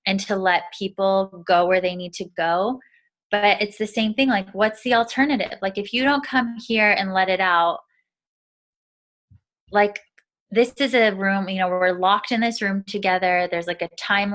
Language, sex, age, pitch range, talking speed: English, female, 20-39, 180-210 Hz, 195 wpm